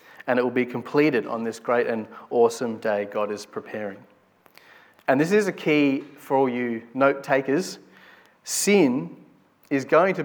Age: 30-49